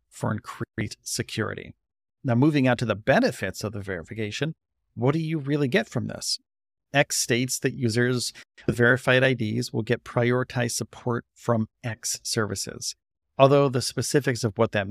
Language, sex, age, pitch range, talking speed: English, male, 40-59, 115-135 Hz, 155 wpm